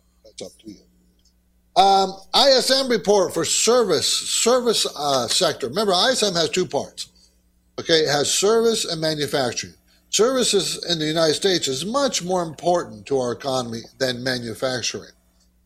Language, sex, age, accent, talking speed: English, male, 60-79, American, 140 wpm